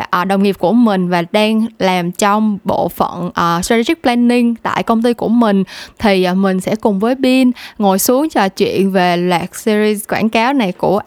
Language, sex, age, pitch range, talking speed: Vietnamese, female, 10-29, 190-255 Hz, 195 wpm